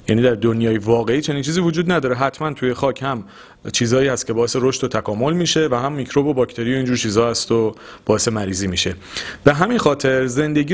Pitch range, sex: 115-155 Hz, male